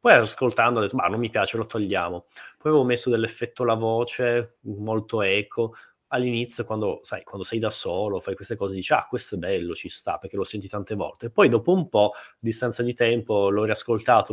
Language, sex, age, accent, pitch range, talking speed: Italian, male, 20-39, native, 100-120 Hz, 215 wpm